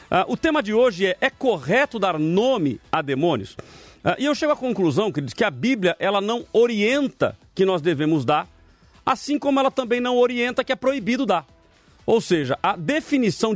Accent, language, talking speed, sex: Brazilian, Portuguese, 190 wpm, male